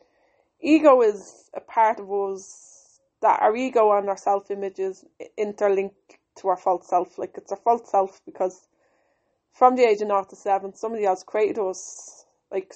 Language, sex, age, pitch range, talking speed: English, female, 20-39, 195-225 Hz, 170 wpm